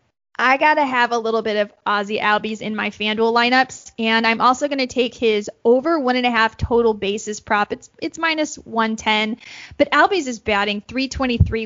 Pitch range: 220-275 Hz